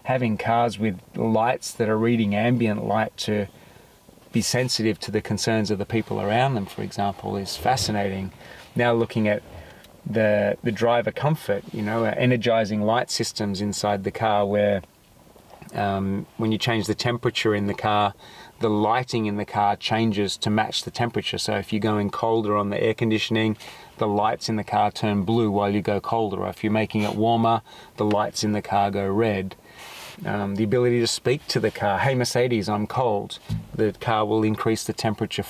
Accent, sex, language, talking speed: Australian, male, English, 185 wpm